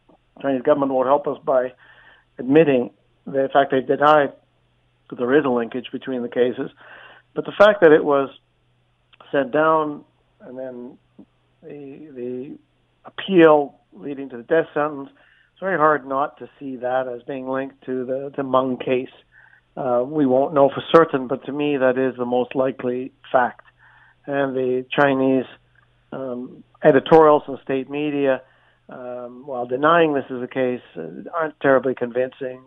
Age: 60-79